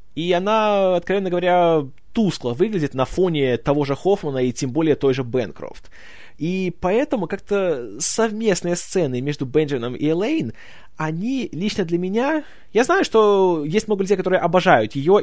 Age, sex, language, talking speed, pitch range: 20-39, male, Russian, 155 wpm, 140-185 Hz